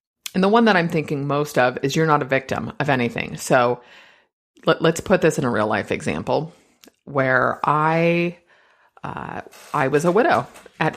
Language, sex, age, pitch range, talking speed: English, female, 30-49, 155-210 Hz, 180 wpm